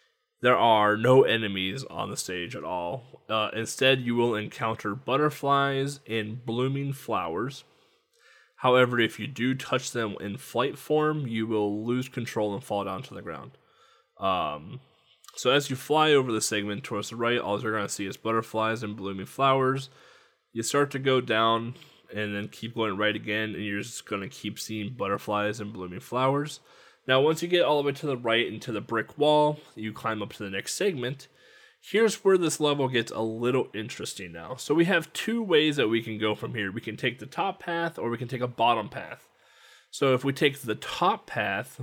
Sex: male